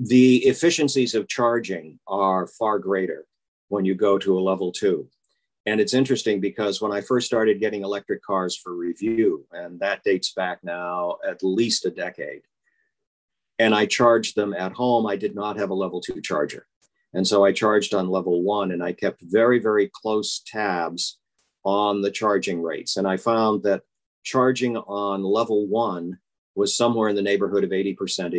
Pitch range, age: 95-120 Hz, 50-69